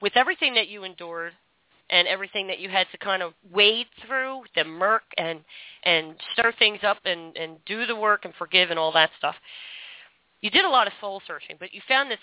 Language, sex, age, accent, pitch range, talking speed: English, female, 40-59, American, 170-210 Hz, 215 wpm